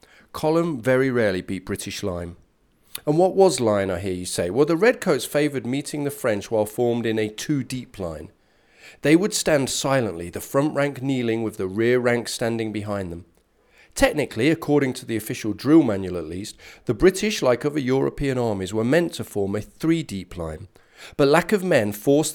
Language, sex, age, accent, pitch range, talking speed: English, male, 40-59, British, 105-155 Hz, 190 wpm